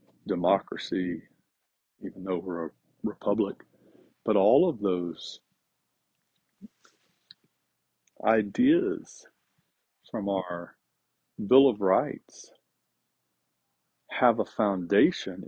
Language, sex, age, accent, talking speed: English, male, 50-69, American, 75 wpm